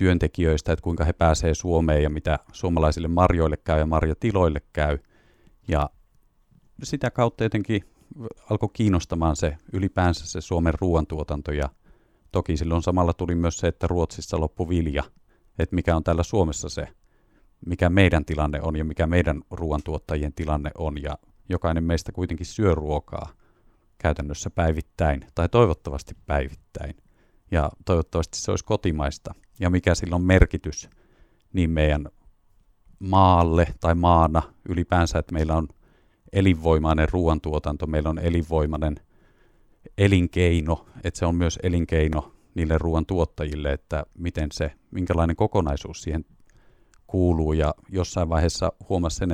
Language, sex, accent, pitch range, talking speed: Finnish, male, native, 80-90 Hz, 130 wpm